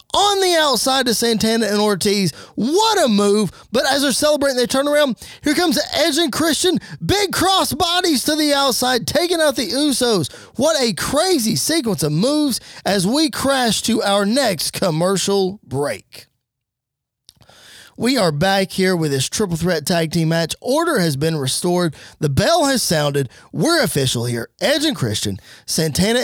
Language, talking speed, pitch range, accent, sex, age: English, 165 wpm, 170-260 Hz, American, male, 20-39